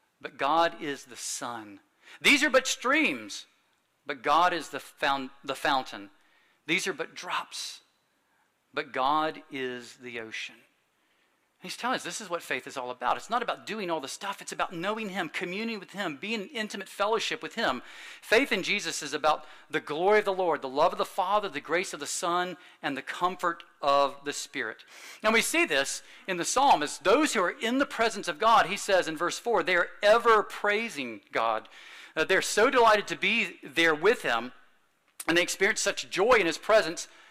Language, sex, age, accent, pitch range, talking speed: English, male, 50-69, American, 155-210 Hz, 200 wpm